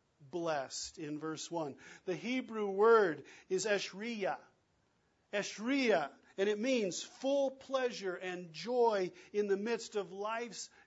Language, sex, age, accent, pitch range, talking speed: English, male, 50-69, American, 180-230 Hz, 120 wpm